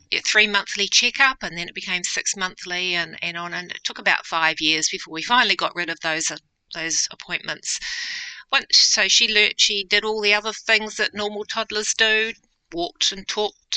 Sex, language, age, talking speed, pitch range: female, English, 40-59, 195 wpm, 170-225 Hz